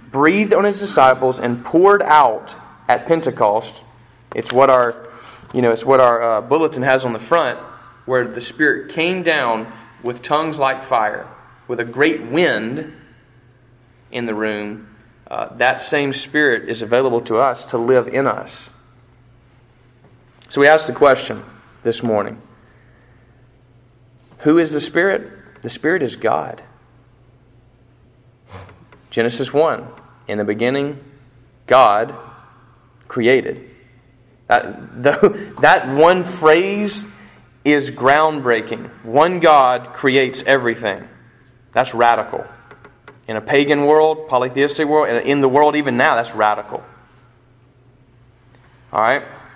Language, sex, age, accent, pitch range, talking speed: English, male, 40-59, American, 120-140 Hz, 120 wpm